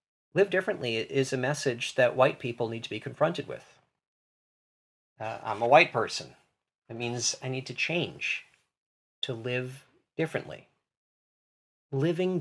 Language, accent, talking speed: English, American, 135 wpm